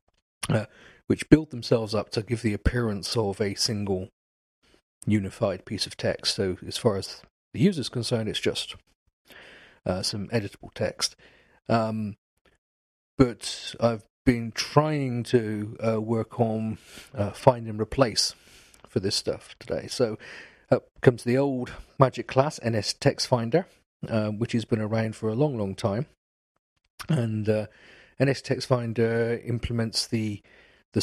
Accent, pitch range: British, 100-120 Hz